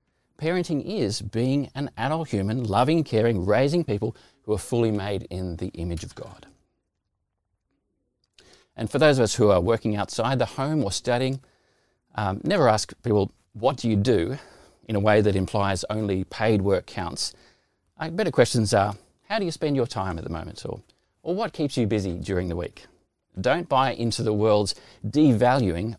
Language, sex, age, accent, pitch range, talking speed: English, male, 30-49, Australian, 95-130 Hz, 175 wpm